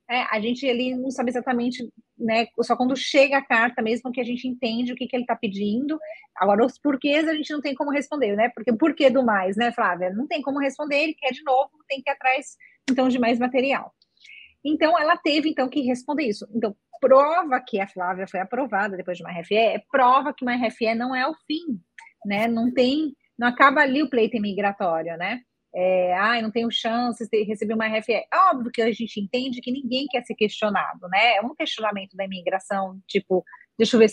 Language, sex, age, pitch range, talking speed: Portuguese, female, 30-49, 215-270 Hz, 220 wpm